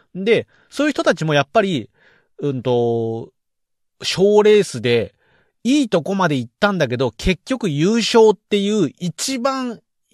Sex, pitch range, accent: male, 135-210 Hz, native